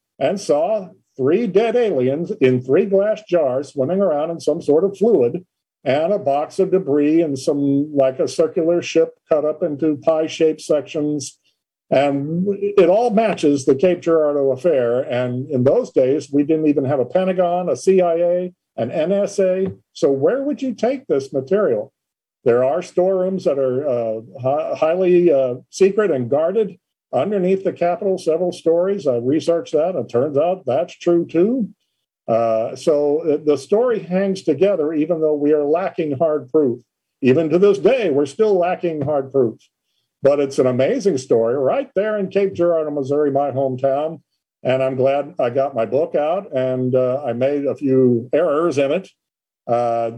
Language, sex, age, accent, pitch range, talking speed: English, male, 50-69, American, 135-185 Hz, 165 wpm